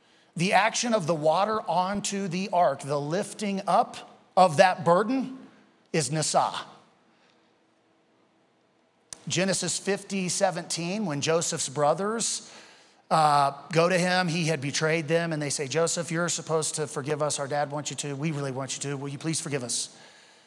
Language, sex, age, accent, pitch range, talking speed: English, male, 40-59, American, 145-185 Hz, 160 wpm